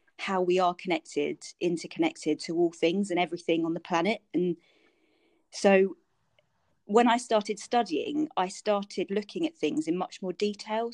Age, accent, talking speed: 30-49, British, 155 wpm